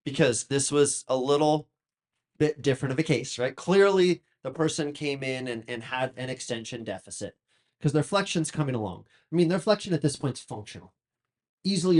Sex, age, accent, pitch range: male, 30-49, American, 120-150 Hz